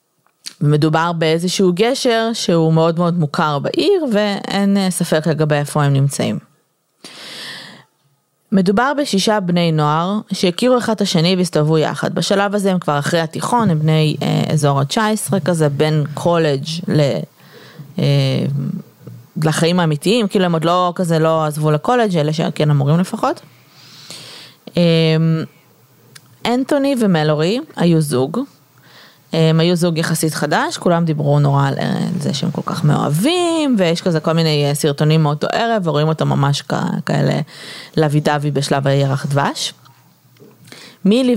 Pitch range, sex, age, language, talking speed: 150-195 Hz, female, 20-39, Hebrew, 135 wpm